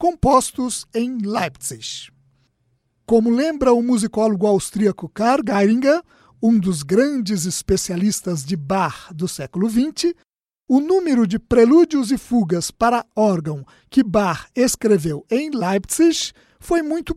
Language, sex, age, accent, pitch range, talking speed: Portuguese, male, 50-69, Brazilian, 195-260 Hz, 120 wpm